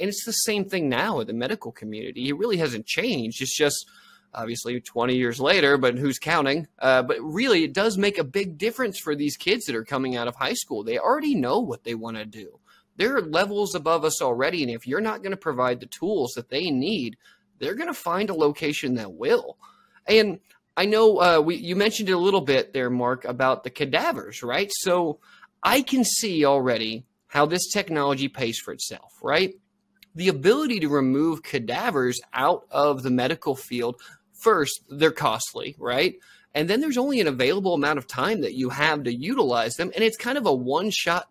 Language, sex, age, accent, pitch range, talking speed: English, male, 20-39, American, 135-205 Hz, 200 wpm